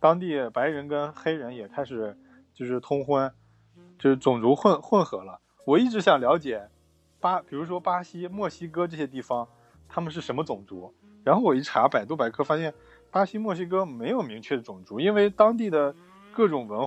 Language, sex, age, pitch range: Chinese, male, 20-39, 120-180 Hz